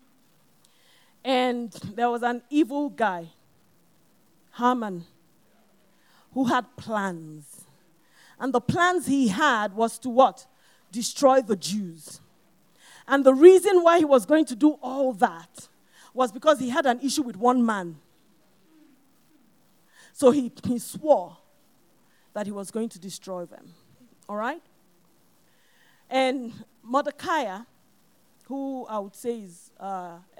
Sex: female